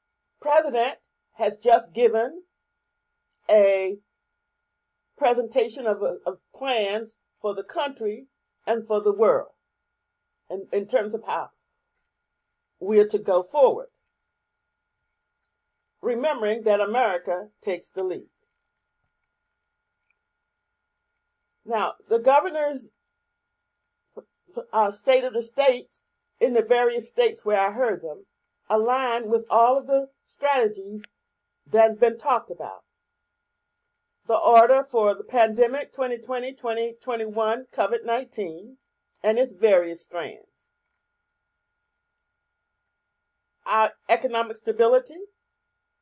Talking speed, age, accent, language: 100 wpm, 50-69, American, English